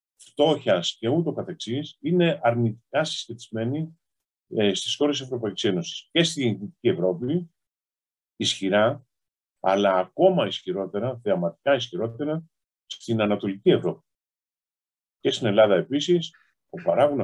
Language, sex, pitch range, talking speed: Greek, male, 95-145 Hz, 105 wpm